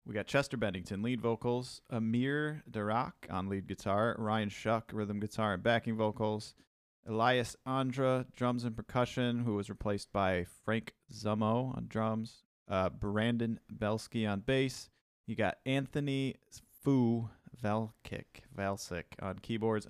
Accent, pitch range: American, 100-120 Hz